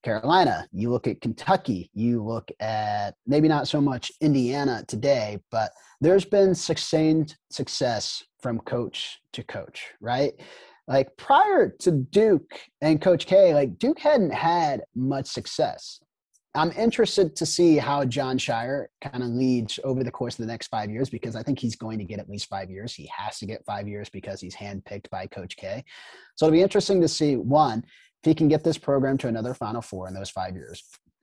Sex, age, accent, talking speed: male, 30-49, American, 190 wpm